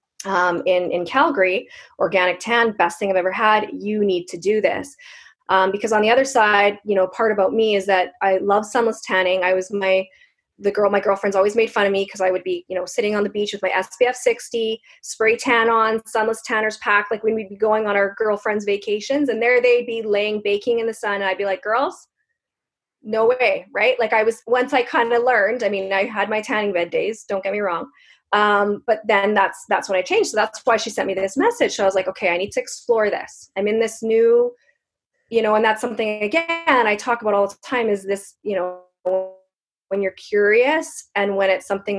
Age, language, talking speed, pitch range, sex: 20-39, English, 235 wpm, 190-230 Hz, female